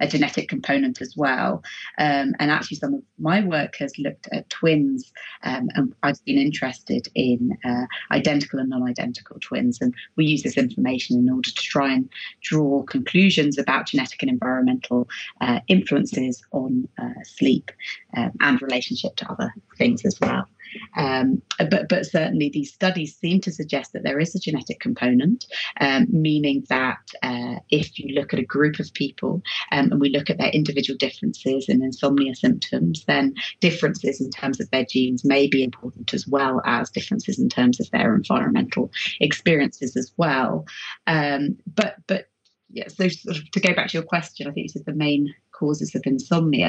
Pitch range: 140-215 Hz